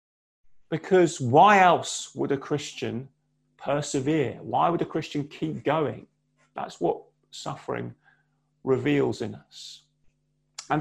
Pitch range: 150-205 Hz